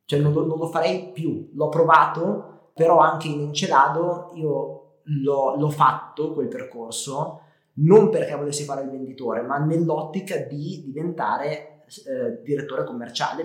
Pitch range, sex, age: 135-165 Hz, male, 20-39